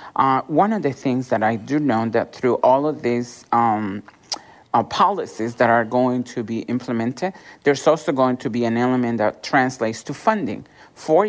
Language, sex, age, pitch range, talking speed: English, male, 50-69, 120-155 Hz, 185 wpm